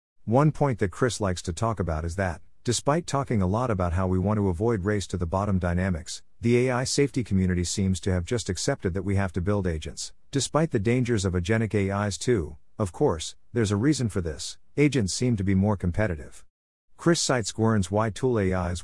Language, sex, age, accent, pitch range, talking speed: English, male, 50-69, American, 90-120 Hz, 210 wpm